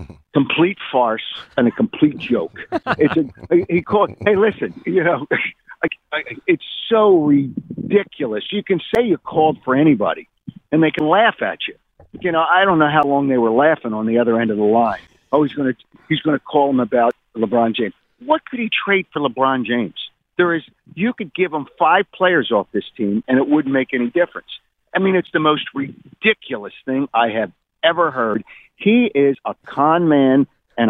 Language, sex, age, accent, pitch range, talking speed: English, male, 50-69, American, 125-205 Hz, 195 wpm